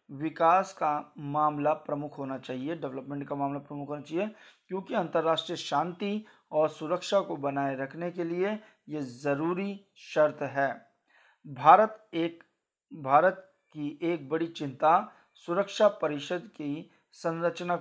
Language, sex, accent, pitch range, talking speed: Hindi, male, native, 145-175 Hz, 125 wpm